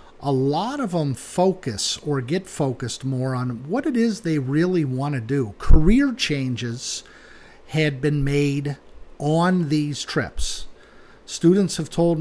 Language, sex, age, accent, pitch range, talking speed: English, male, 50-69, American, 130-155 Hz, 145 wpm